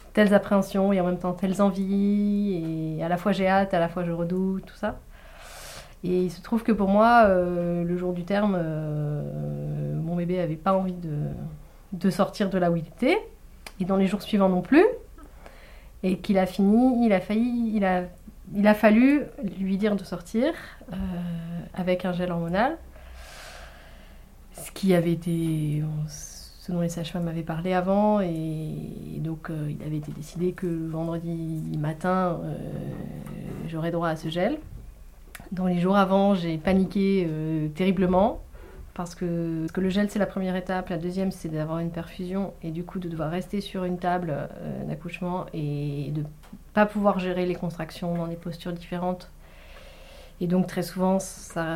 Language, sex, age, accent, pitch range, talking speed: French, female, 30-49, French, 165-195 Hz, 175 wpm